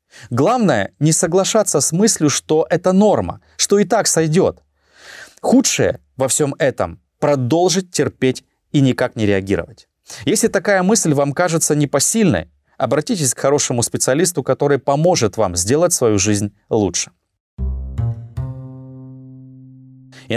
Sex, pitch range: male, 115-155 Hz